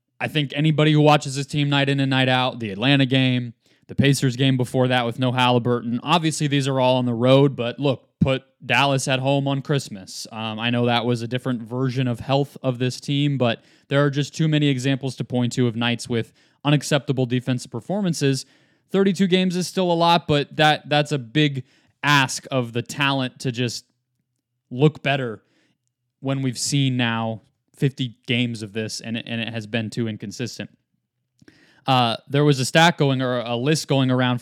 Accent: American